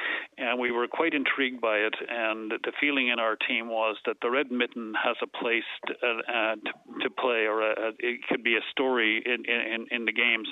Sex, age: male, 40-59